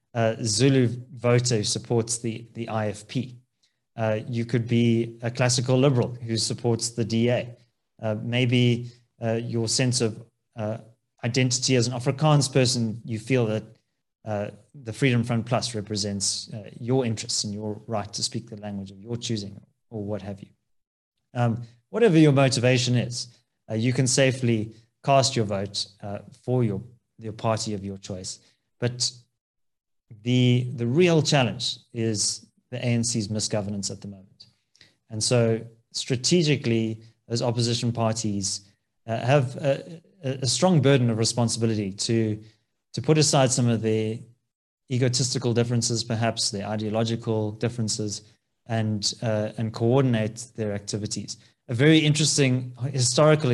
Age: 30-49